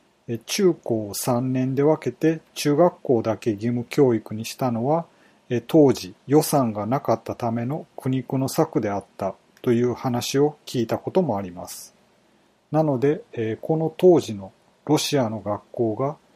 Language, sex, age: Japanese, male, 40-59